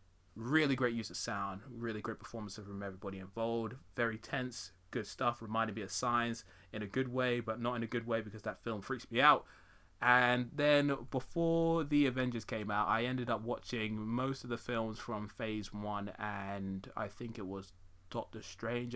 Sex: male